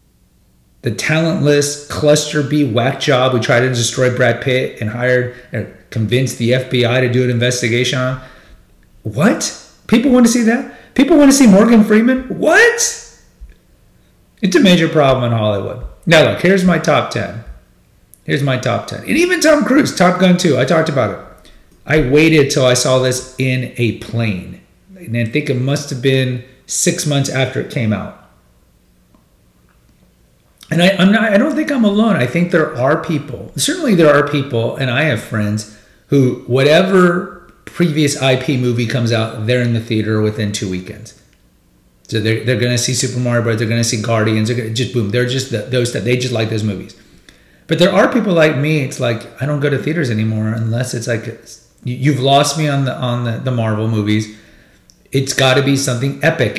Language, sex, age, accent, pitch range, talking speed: English, male, 40-59, American, 115-155 Hz, 190 wpm